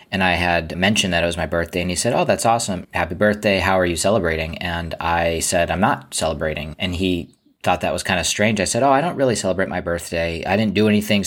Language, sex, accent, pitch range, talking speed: English, male, American, 85-95 Hz, 255 wpm